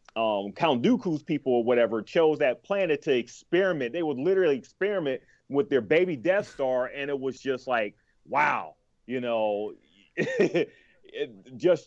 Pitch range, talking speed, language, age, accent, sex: 120-160 Hz, 145 wpm, English, 30-49, American, male